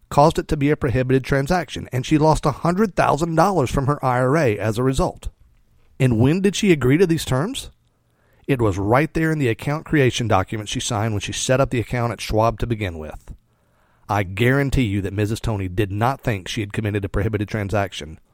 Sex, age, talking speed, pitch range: male, 40-59, 205 wpm, 110-140 Hz